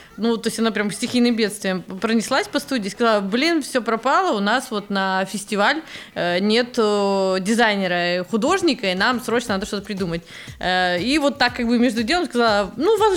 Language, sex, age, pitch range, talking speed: Russian, female, 20-39, 190-240 Hz, 175 wpm